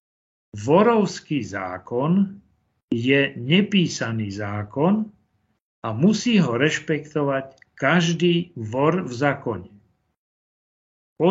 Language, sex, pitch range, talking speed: Slovak, male, 120-175 Hz, 75 wpm